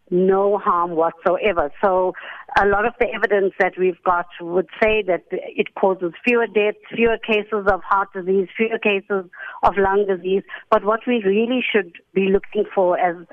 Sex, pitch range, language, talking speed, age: female, 185-220 Hz, English, 170 wpm, 50-69